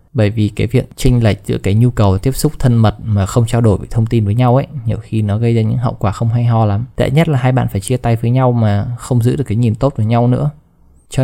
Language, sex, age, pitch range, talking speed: Vietnamese, male, 20-39, 105-125 Hz, 305 wpm